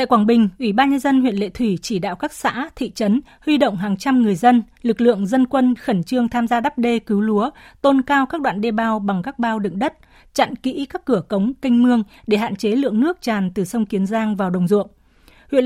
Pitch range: 205-255 Hz